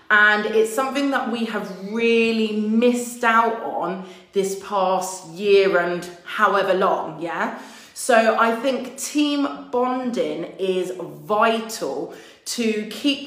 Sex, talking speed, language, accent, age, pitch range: female, 120 wpm, English, British, 30-49, 195-235 Hz